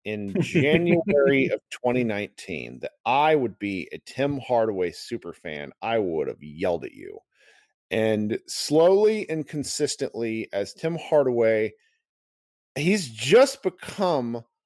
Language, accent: English, American